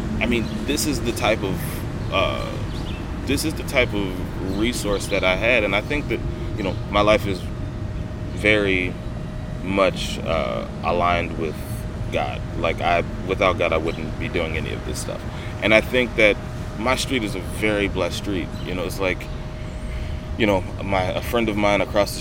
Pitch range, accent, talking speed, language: 95-115 Hz, American, 185 wpm, English